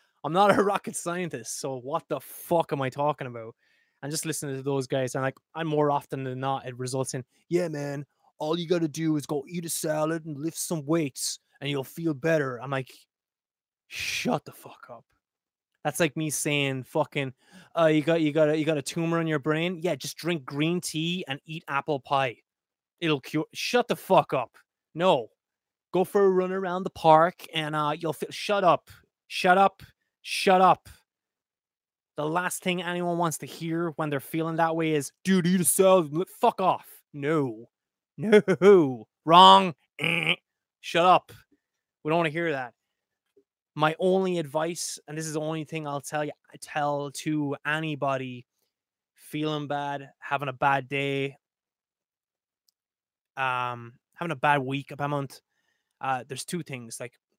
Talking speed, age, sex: 180 wpm, 20-39, male